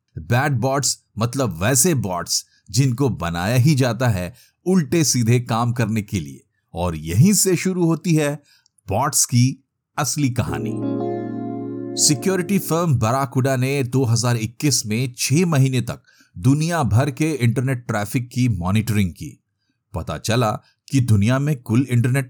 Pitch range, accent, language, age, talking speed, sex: 110-145 Hz, native, Hindi, 50-69, 135 wpm, male